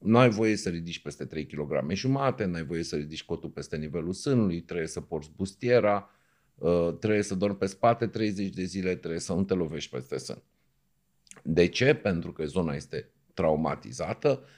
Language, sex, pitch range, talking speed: Romanian, male, 85-110 Hz, 175 wpm